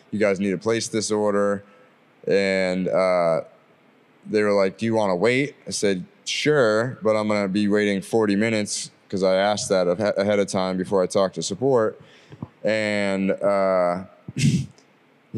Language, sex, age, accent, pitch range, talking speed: English, male, 20-39, American, 100-110 Hz, 165 wpm